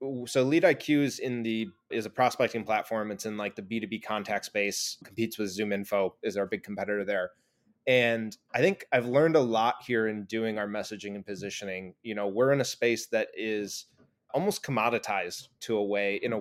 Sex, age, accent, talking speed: male, 20-39, American, 200 wpm